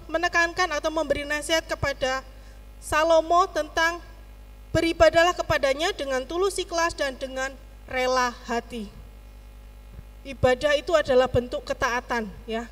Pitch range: 235-295 Hz